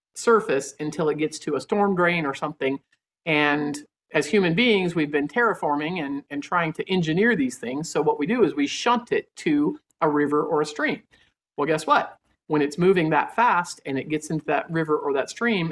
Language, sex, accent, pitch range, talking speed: English, male, American, 145-185 Hz, 210 wpm